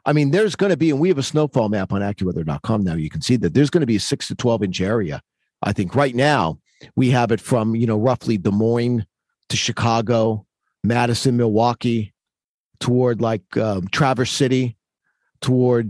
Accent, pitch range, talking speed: American, 115-140 Hz, 195 wpm